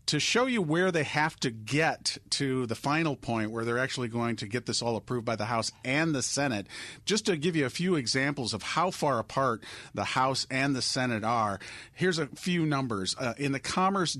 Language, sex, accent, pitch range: English, male, American, 120-150 Hz